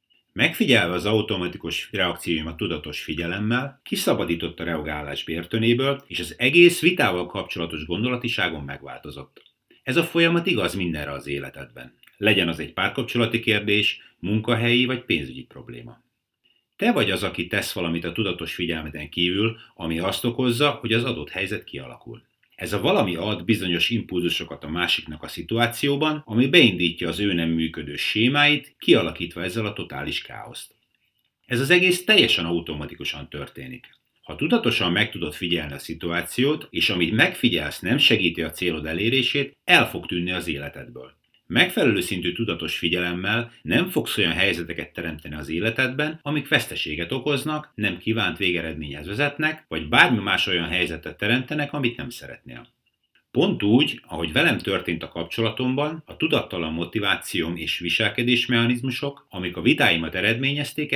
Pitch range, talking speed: 85-120 Hz, 140 wpm